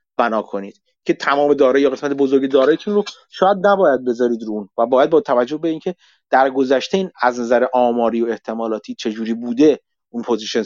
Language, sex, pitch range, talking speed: Persian, male, 130-175 Hz, 180 wpm